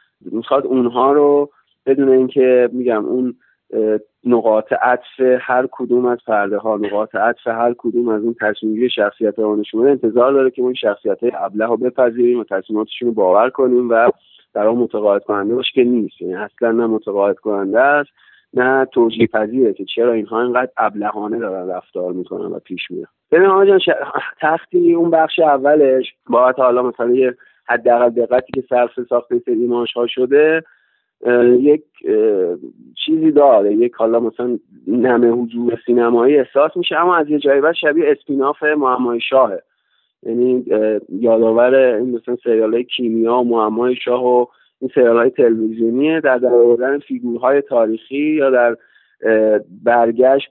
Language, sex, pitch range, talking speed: Persian, male, 115-135 Hz, 145 wpm